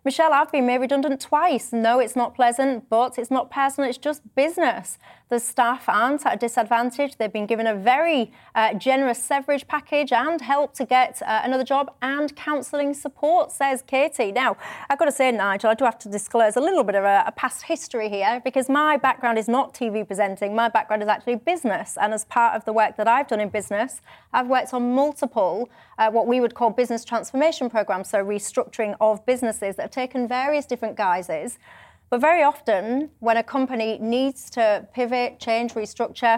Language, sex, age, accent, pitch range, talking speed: English, female, 30-49, British, 220-275 Hz, 200 wpm